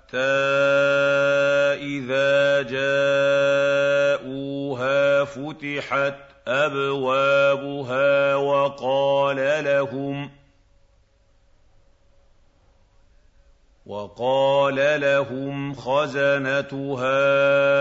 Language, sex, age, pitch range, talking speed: Arabic, male, 50-69, 130-140 Hz, 35 wpm